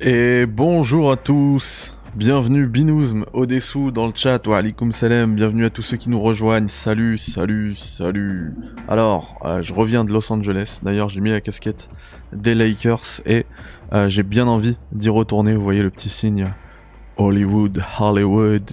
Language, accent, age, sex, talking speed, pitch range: French, French, 20-39, male, 160 wpm, 105-130 Hz